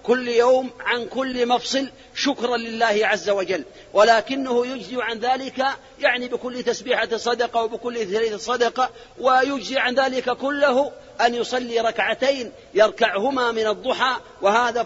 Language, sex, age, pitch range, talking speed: Arabic, male, 40-59, 220-245 Hz, 125 wpm